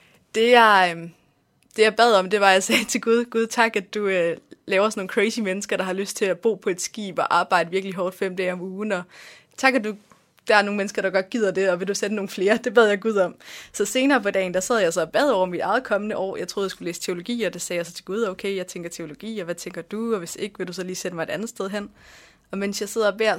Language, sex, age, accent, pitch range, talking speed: Danish, female, 20-39, native, 185-230 Hz, 300 wpm